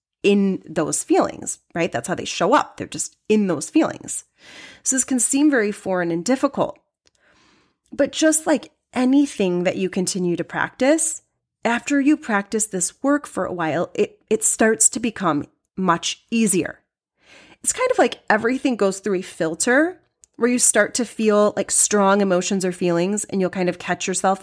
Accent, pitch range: American, 185-240 Hz